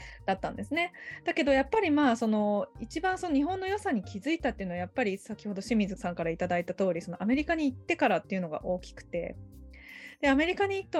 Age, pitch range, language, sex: 20-39, 190-275 Hz, Japanese, female